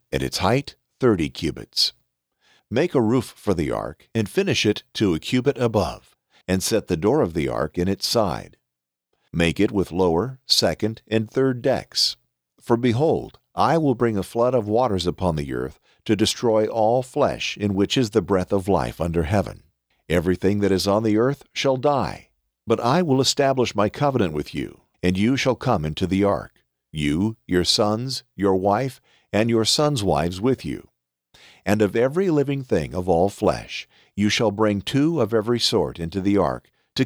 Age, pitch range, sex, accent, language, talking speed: 50-69, 90-120 Hz, male, American, English, 185 wpm